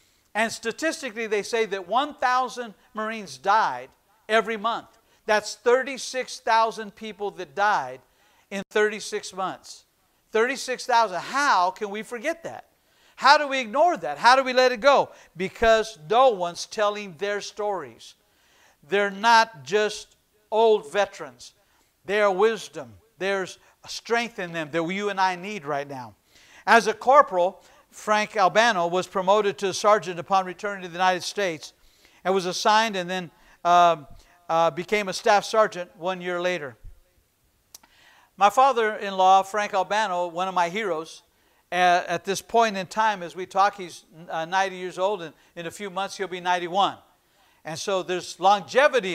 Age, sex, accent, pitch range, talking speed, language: 60-79, male, American, 180-220 Hz, 155 wpm, English